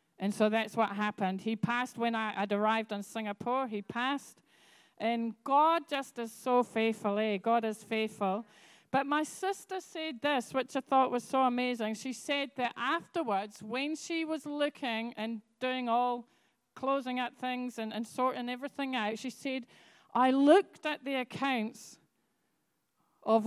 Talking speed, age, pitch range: 160 wpm, 40-59, 215-270 Hz